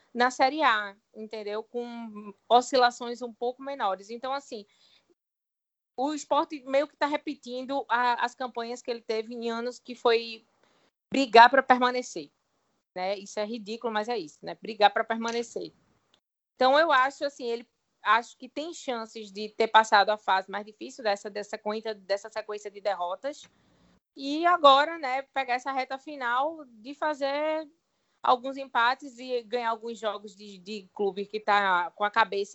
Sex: female